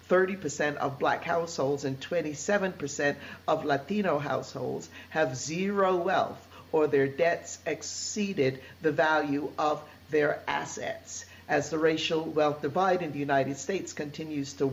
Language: English